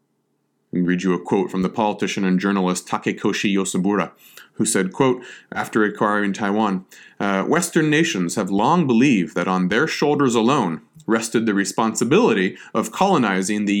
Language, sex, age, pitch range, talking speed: English, male, 30-49, 95-140 Hz, 150 wpm